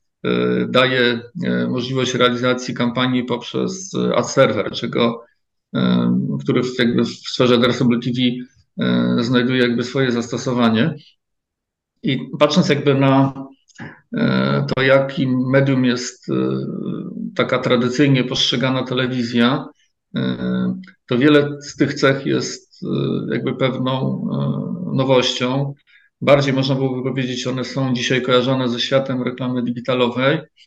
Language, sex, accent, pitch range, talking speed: Polish, male, native, 120-135 Hz, 95 wpm